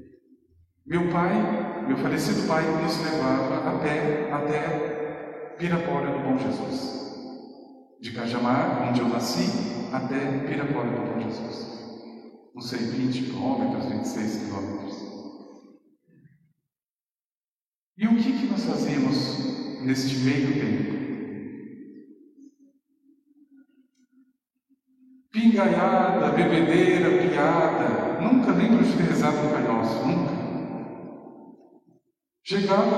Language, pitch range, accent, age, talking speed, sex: Portuguese, 140-230 Hz, Brazilian, 50-69, 85 wpm, male